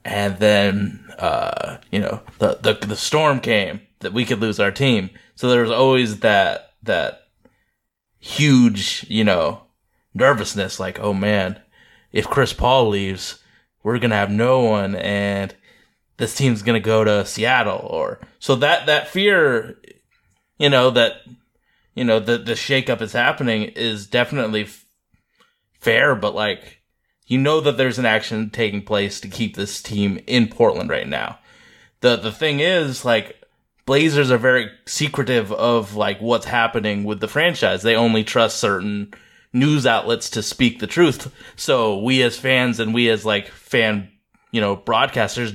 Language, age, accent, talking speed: English, 20-39, American, 160 wpm